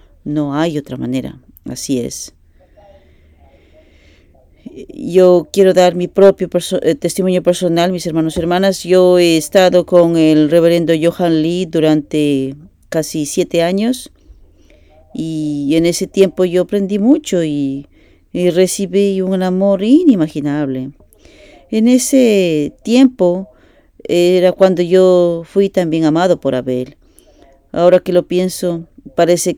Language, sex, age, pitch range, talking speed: English, female, 40-59, 155-190 Hz, 120 wpm